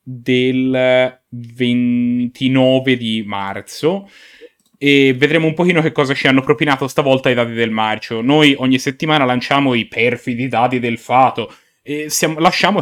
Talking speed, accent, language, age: 140 wpm, native, Italian, 30-49